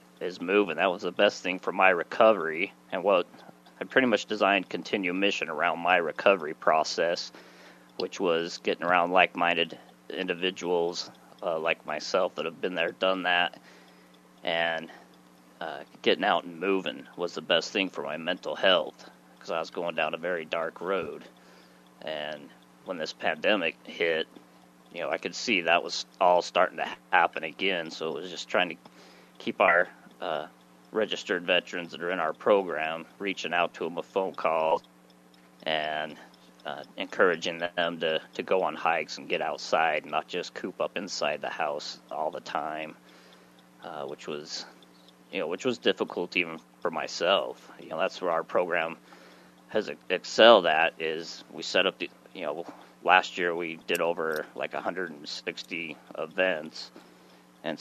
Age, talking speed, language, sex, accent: 30-49, 165 wpm, English, male, American